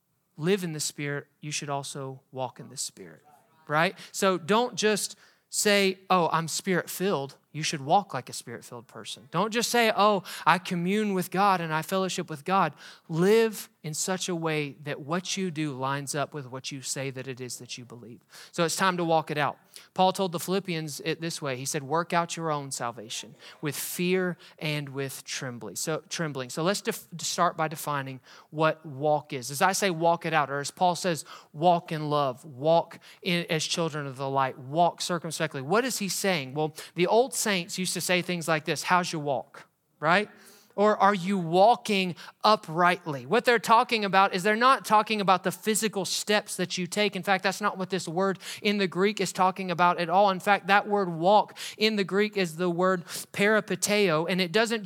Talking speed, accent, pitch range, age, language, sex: 205 wpm, American, 155-195 Hz, 30-49, English, male